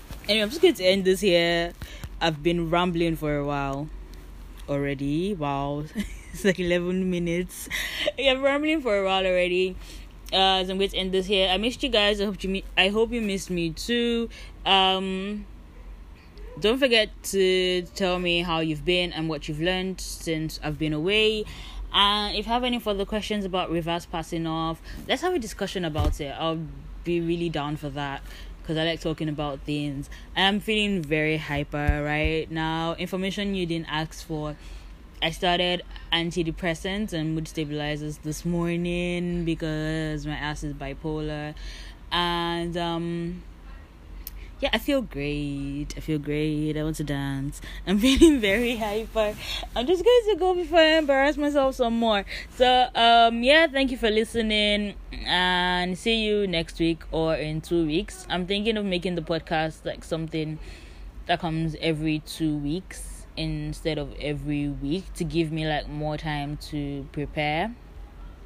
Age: 10-29